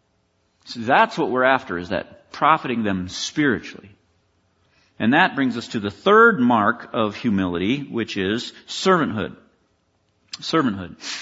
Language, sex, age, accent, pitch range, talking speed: English, male, 50-69, American, 125-185 Hz, 130 wpm